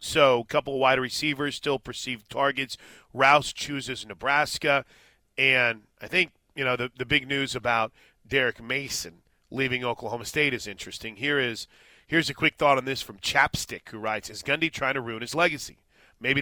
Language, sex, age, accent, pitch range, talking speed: English, male, 30-49, American, 125-165 Hz, 180 wpm